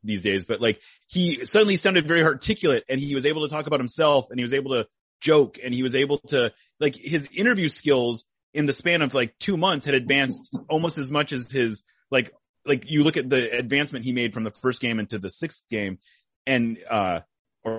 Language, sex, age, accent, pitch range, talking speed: English, male, 30-49, American, 110-150 Hz, 220 wpm